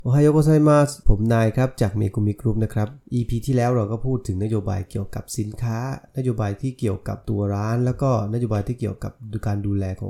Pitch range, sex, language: 100-125 Hz, male, Thai